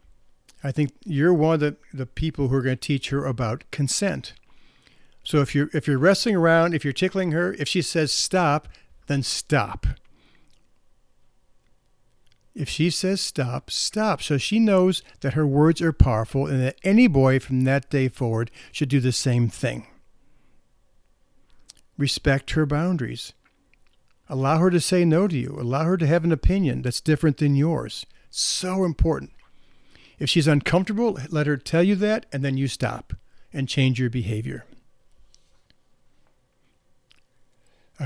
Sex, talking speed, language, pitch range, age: male, 155 wpm, English, 130-165 Hz, 50-69